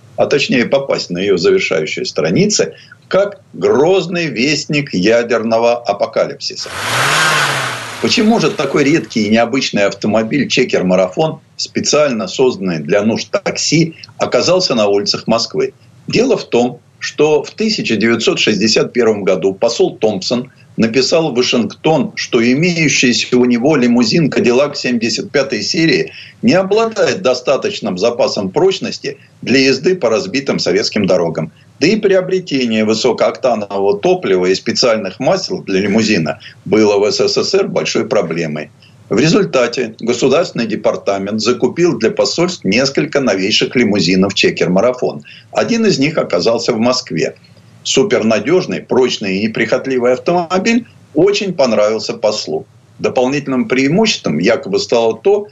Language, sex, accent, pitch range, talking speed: Russian, male, native, 115-190 Hz, 110 wpm